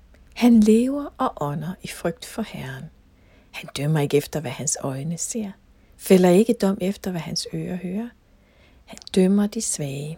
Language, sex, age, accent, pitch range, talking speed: Danish, female, 60-79, native, 150-215 Hz, 165 wpm